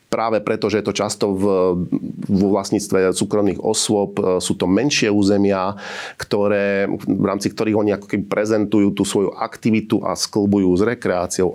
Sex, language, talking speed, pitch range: male, Slovak, 150 wpm, 95-110 Hz